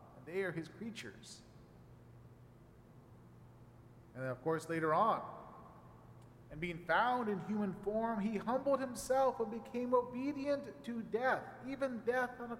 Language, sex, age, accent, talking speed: English, male, 40-59, American, 130 wpm